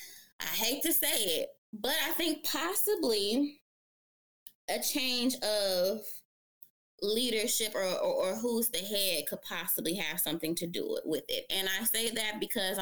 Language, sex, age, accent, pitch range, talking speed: English, female, 20-39, American, 175-240 Hz, 150 wpm